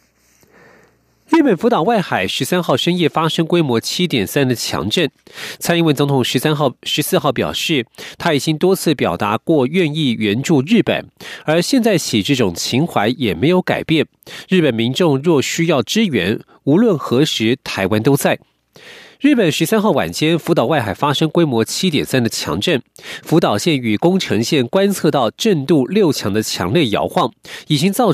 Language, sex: Chinese, male